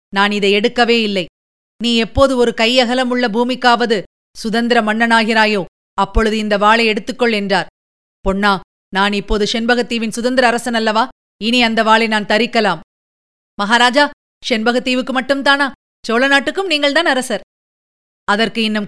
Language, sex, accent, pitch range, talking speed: Tamil, female, native, 210-265 Hz, 120 wpm